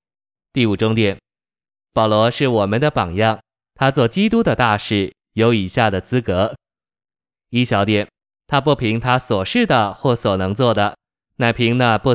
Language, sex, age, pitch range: Chinese, male, 20-39, 105-125 Hz